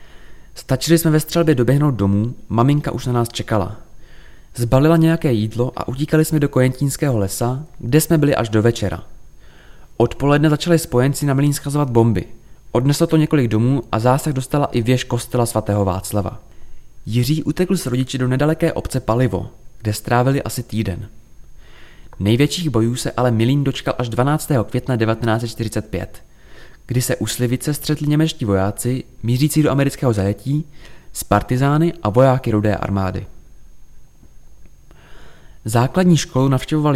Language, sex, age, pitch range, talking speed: Czech, male, 20-39, 110-145 Hz, 140 wpm